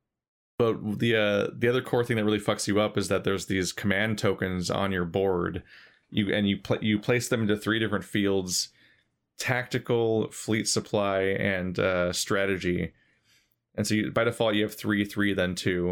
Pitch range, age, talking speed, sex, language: 95-110 Hz, 20-39, 185 wpm, male, English